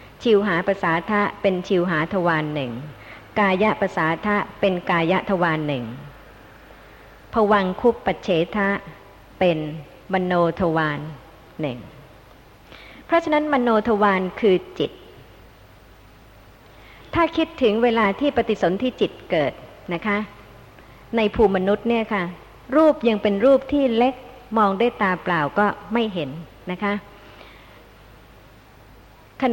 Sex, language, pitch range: male, Thai, 165-215 Hz